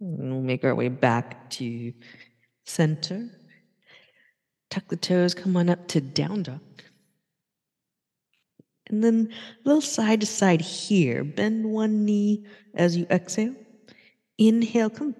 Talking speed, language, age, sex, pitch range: 130 wpm, English, 50-69, female, 150-220 Hz